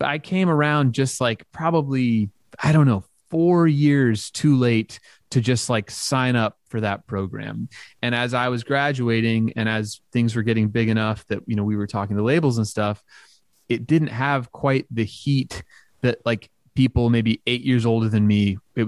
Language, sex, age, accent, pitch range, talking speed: English, male, 30-49, American, 110-135 Hz, 190 wpm